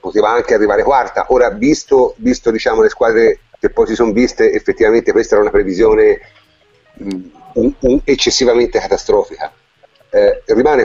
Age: 40-59